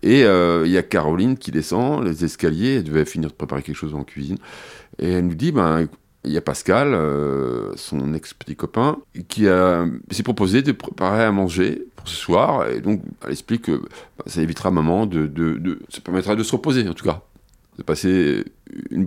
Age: 40-59